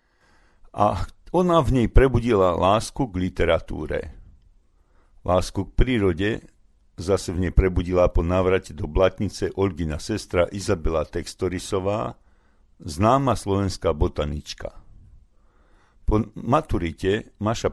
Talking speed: 100 wpm